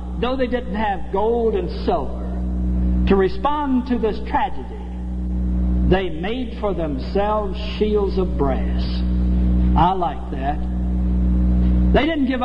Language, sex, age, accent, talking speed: English, male, 60-79, American, 120 wpm